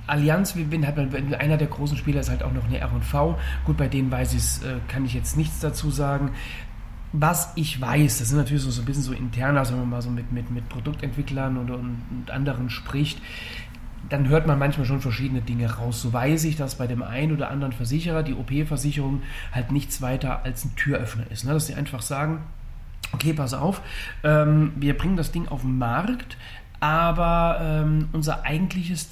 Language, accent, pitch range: German, German, 125-150 Hz